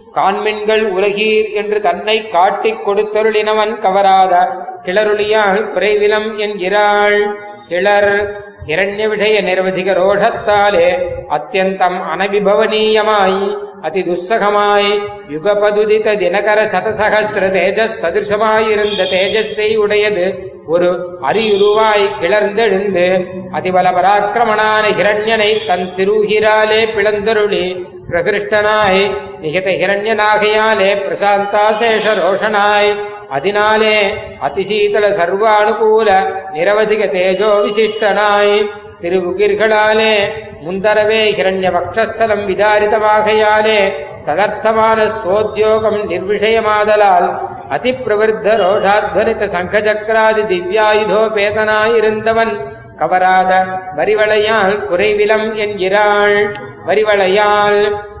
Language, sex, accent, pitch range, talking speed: Tamil, male, native, 195-215 Hz, 50 wpm